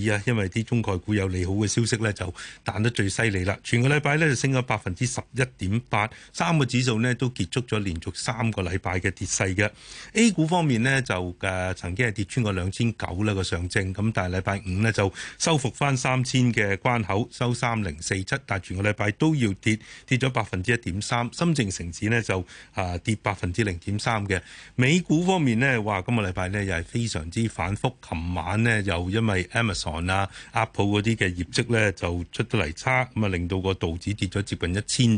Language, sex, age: Chinese, male, 30-49